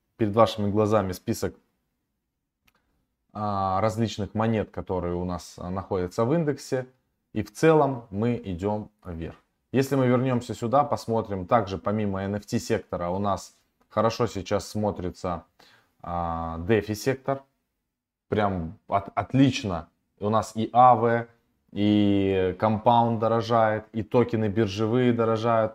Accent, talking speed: native, 105 wpm